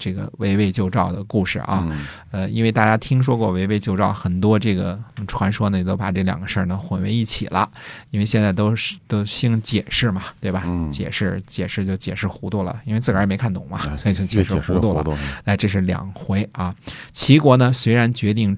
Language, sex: Chinese, male